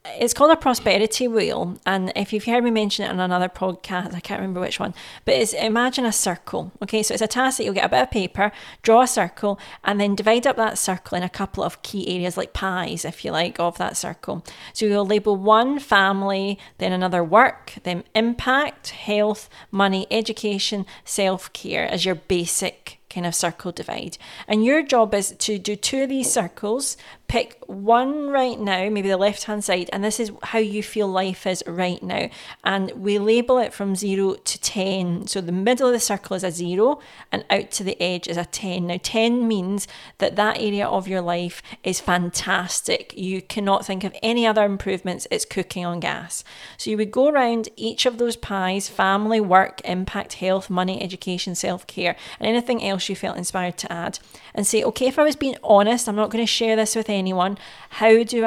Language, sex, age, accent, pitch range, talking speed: English, female, 40-59, British, 185-225 Hz, 205 wpm